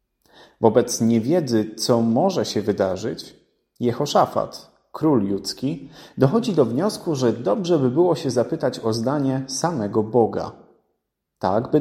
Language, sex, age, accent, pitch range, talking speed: Polish, male, 30-49, native, 110-155 Hz, 120 wpm